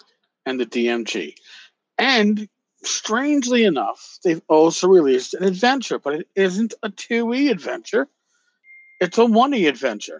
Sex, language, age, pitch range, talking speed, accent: male, English, 50-69, 140-220 Hz, 125 wpm, American